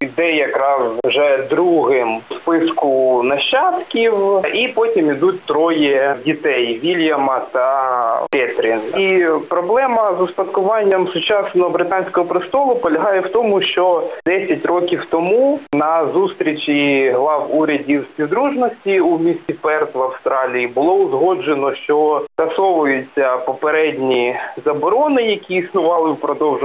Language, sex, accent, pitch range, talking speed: Ukrainian, male, native, 135-190 Hz, 110 wpm